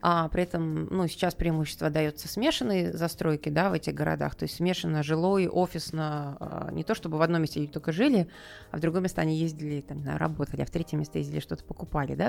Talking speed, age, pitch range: 205 wpm, 20-39, 150-185 Hz